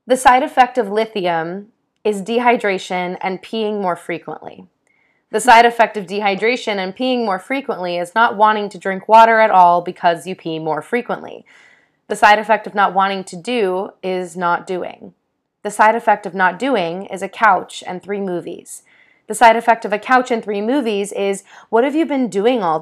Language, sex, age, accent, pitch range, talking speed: English, female, 20-39, American, 185-230 Hz, 190 wpm